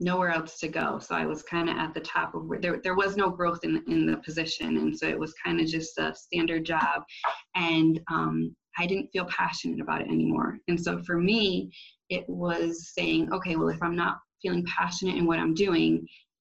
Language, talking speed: English, 220 wpm